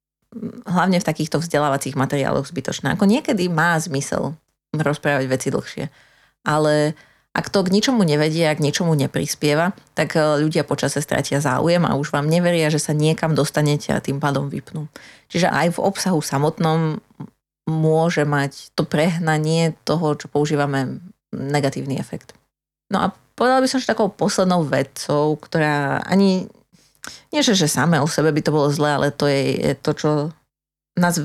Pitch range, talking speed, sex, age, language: 145-165 Hz, 160 wpm, female, 30-49, Slovak